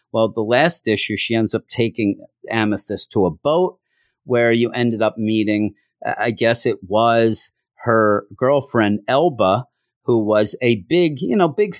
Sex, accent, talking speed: male, American, 160 wpm